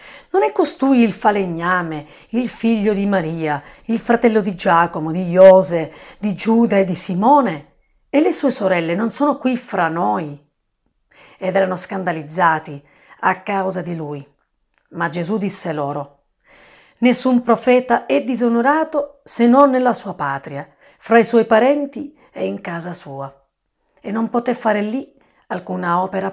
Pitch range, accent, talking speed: 165-235 Hz, native, 145 wpm